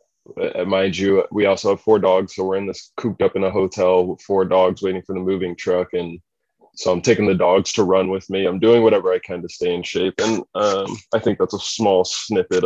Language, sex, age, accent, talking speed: English, male, 20-39, American, 245 wpm